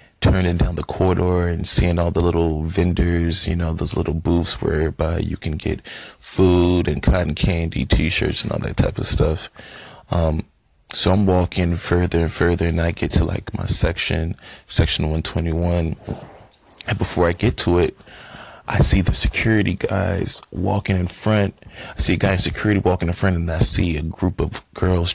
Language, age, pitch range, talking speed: English, 20-39, 85-100 Hz, 180 wpm